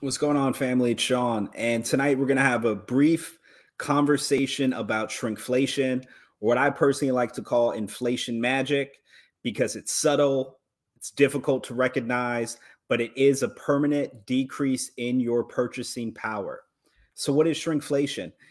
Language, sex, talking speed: English, male, 150 wpm